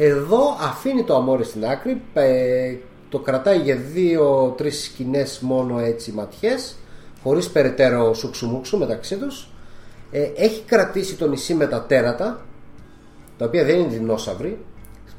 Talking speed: 125 wpm